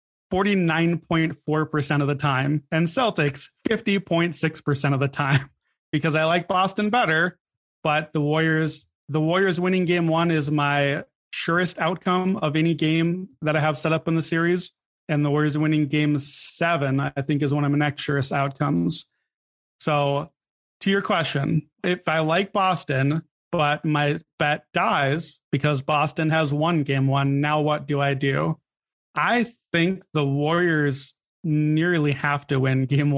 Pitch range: 145-165 Hz